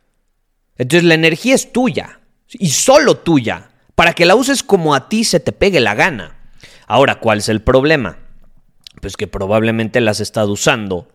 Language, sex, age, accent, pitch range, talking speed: Spanish, male, 30-49, Mexican, 120-160 Hz, 170 wpm